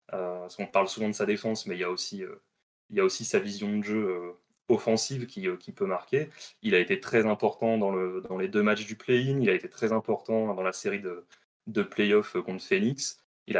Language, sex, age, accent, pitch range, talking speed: French, male, 20-39, French, 100-130 Hz, 245 wpm